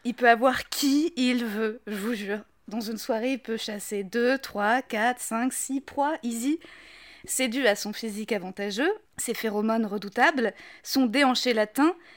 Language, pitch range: French, 225-280 Hz